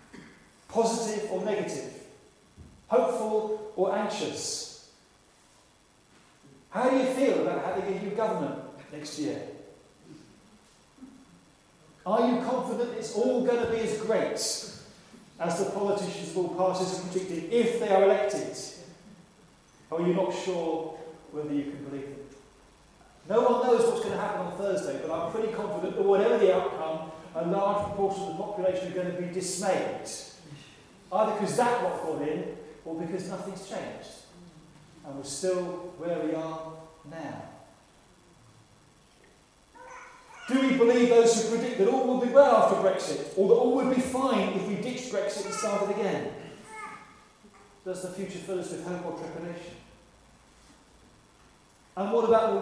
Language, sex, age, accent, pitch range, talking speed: English, male, 40-59, British, 175-225 Hz, 150 wpm